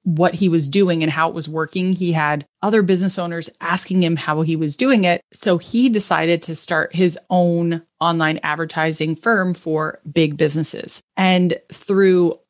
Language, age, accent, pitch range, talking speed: English, 30-49, American, 160-190 Hz, 175 wpm